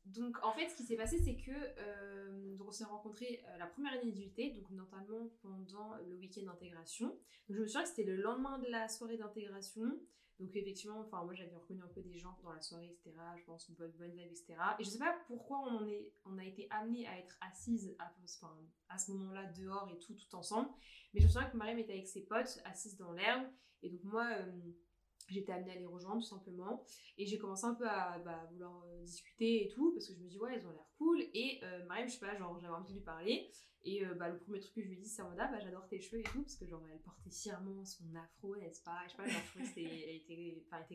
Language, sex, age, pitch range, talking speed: French, female, 20-39, 175-225 Hz, 260 wpm